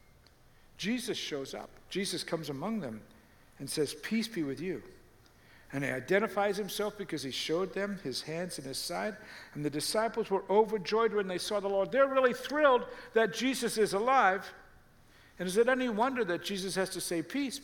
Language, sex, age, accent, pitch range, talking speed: English, male, 60-79, American, 160-220 Hz, 185 wpm